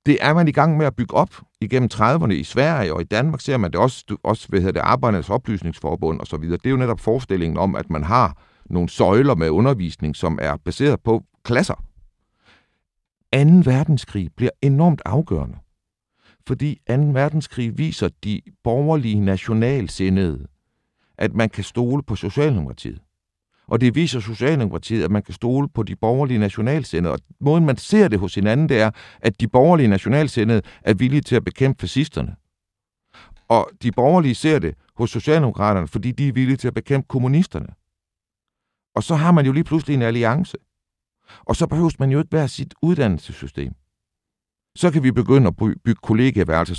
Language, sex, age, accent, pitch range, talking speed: Danish, male, 60-79, native, 100-140 Hz, 175 wpm